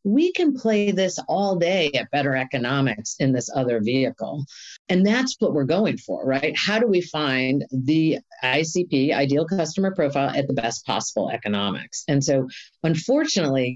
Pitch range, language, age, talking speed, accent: 140-195 Hz, English, 40-59, 160 wpm, American